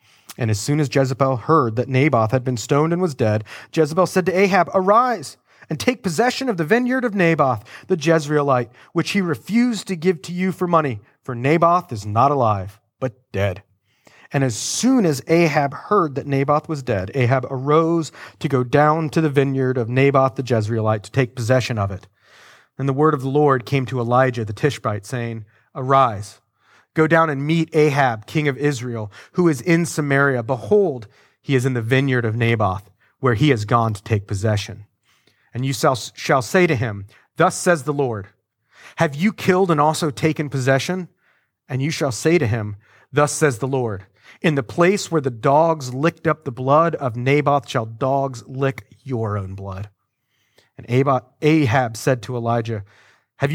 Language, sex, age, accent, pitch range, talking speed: English, male, 30-49, American, 120-160 Hz, 185 wpm